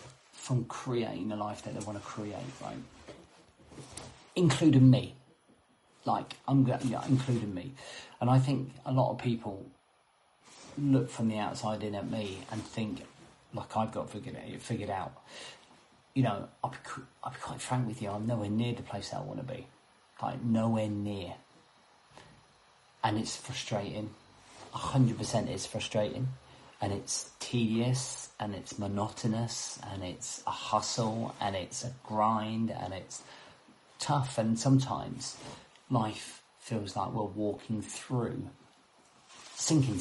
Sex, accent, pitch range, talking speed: male, British, 105-125 Hz, 145 wpm